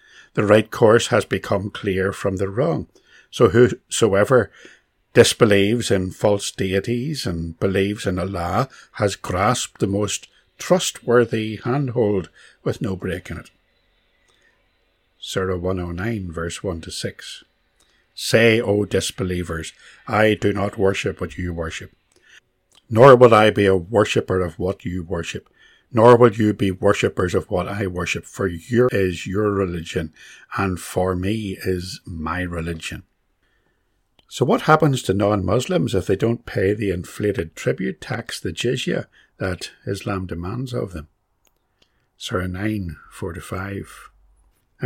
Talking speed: 130 wpm